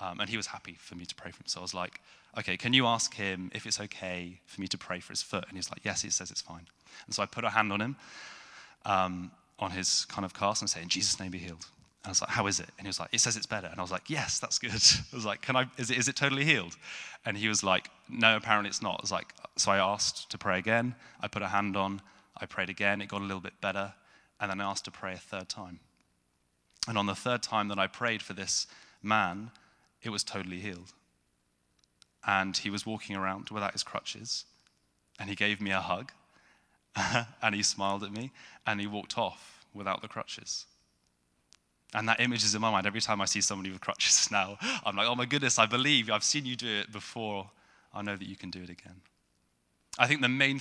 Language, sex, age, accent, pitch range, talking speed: English, male, 30-49, British, 95-110 Hz, 255 wpm